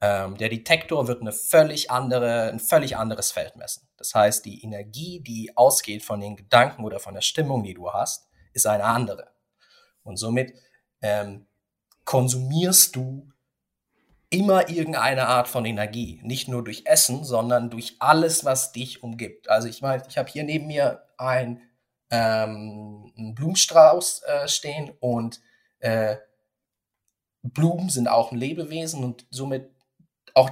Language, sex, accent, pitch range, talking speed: German, male, German, 110-135 Hz, 145 wpm